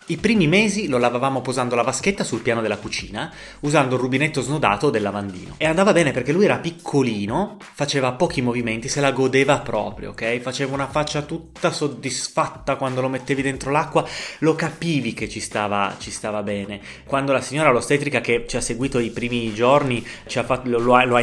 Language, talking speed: Italian, 180 wpm